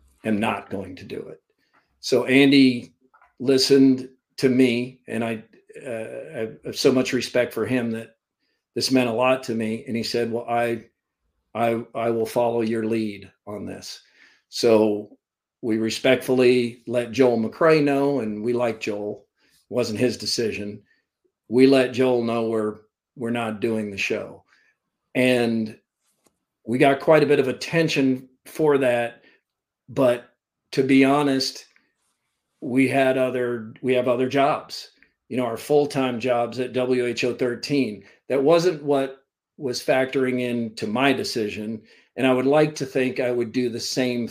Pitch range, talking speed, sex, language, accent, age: 115-135 Hz, 155 wpm, male, English, American, 50-69